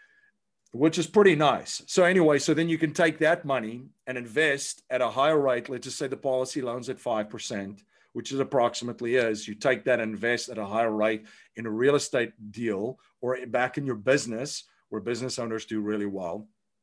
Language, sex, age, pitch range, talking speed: English, male, 40-59, 115-145 Hz, 200 wpm